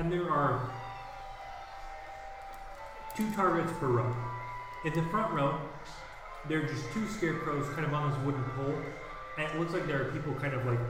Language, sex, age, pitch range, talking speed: English, male, 30-49, 120-145 Hz, 175 wpm